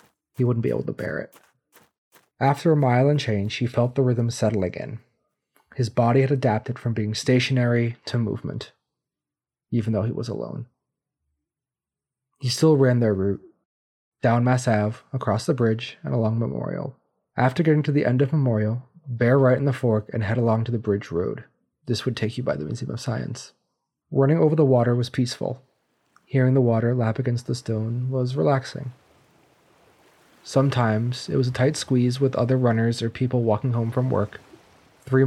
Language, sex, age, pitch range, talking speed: English, male, 30-49, 115-135 Hz, 180 wpm